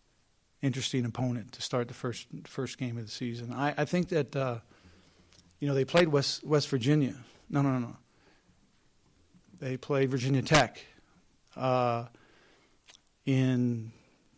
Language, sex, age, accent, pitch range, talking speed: English, male, 50-69, American, 115-135 Hz, 140 wpm